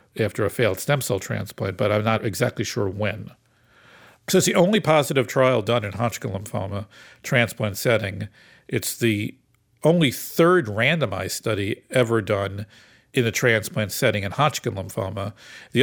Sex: male